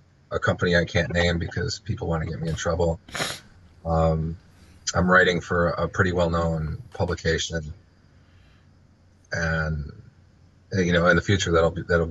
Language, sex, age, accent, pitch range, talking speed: English, male, 30-49, American, 80-95 Hz, 140 wpm